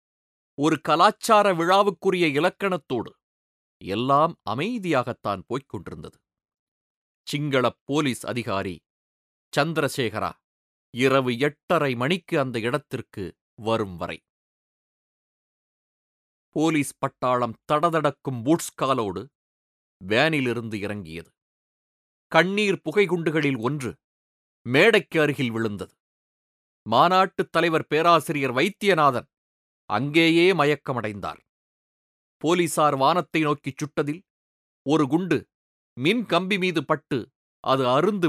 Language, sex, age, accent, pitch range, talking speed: Tamil, male, 30-49, native, 115-170 Hz, 75 wpm